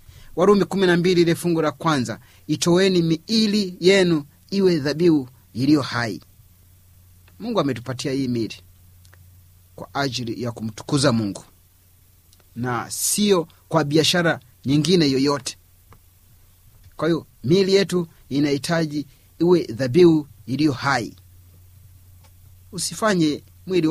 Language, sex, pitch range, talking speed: Swahili, male, 100-160 Hz, 100 wpm